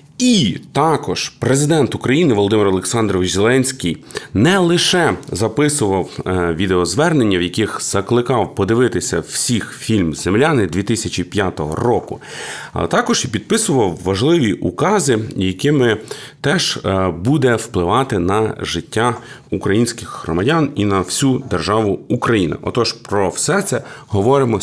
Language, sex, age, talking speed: Ukrainian, male, 30-49, 105 wpm